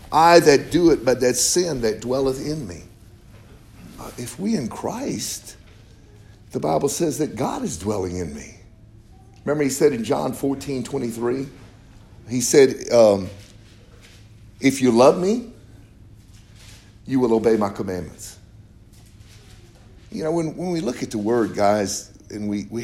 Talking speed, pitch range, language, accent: 150 wpm, 105-130 Hz, English, American